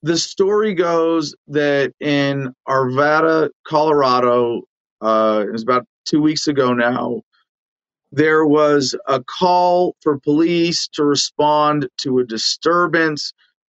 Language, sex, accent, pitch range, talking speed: English, male, American, 140-175 Hz, 115 wpm